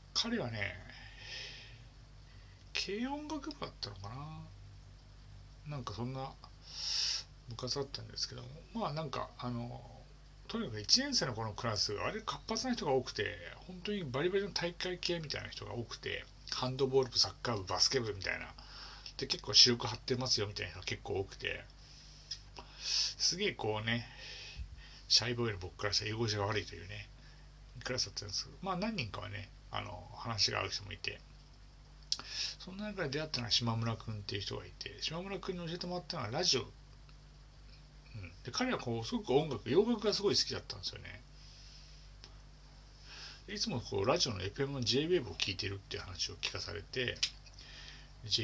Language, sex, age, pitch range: Japanese, male, 60-79, 105-140 Hz